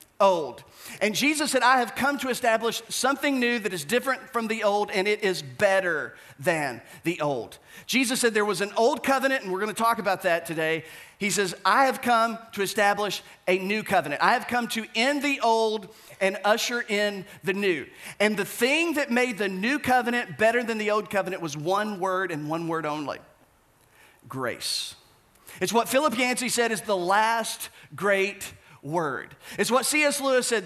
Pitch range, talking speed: 200-255 Hz, 190 wpm